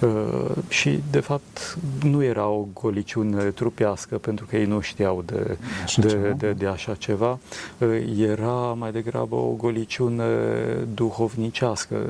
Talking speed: 140 wpm